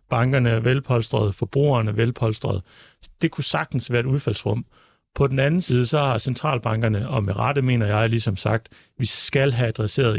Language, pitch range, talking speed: Danish, 110-135 Hz, 175 wpm